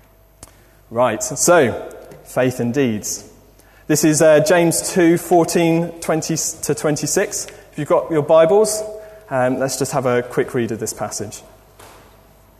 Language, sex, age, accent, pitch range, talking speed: English, male, 20-39, British, 130-200 Hz, 140 wpm